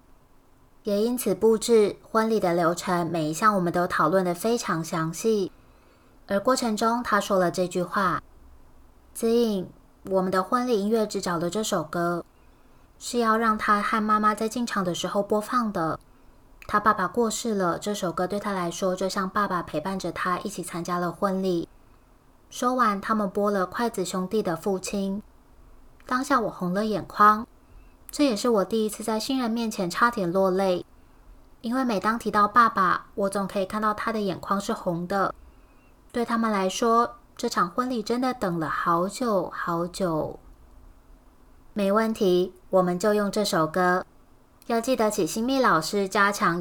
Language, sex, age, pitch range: Chinese, female, 20-39, 175-220 Hz